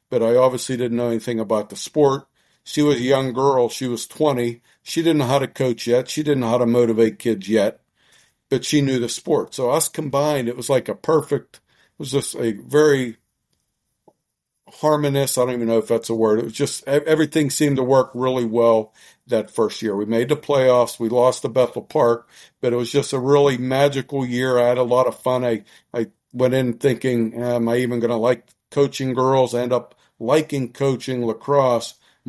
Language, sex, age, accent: English, male, 50-69, American